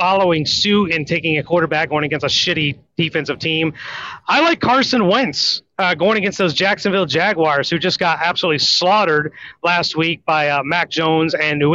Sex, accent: male, American